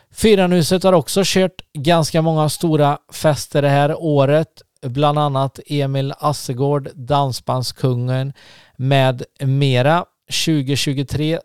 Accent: native